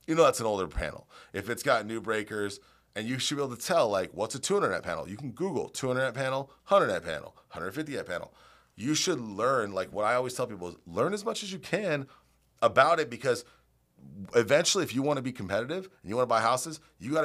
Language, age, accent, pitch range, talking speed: English, 30-49, American, 95-125 Hz, 245 wpm